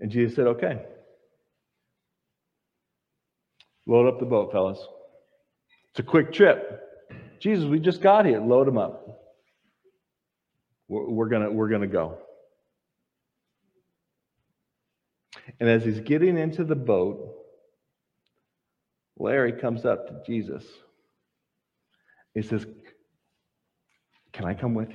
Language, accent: English, American